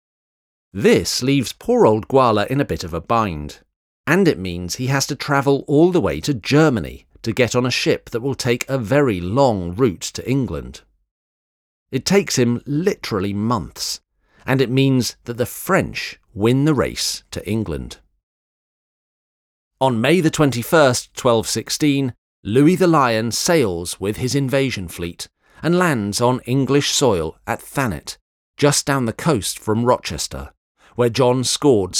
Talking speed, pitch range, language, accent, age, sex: 150 wpm, 90-140 Hz, English, British, 40-59, male